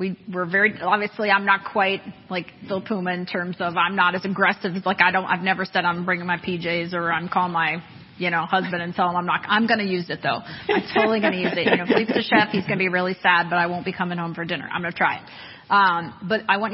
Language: English